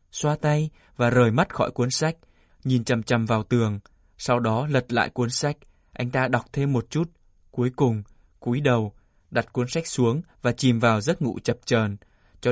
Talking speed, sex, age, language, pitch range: 195 wpm, male, 20-39, Vietnamese, 115-145 Hz